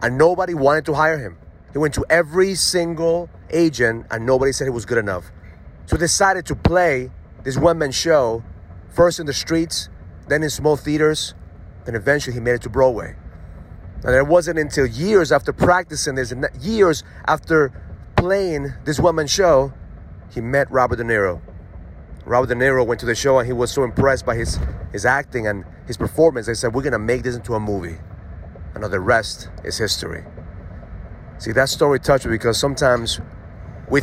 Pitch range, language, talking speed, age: 95-160 Hz, English, 180 wpm, 30-49